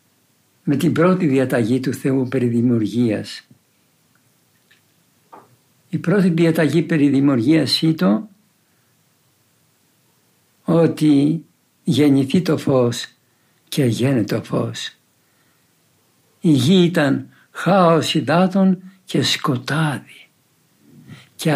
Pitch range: 130-170 Hz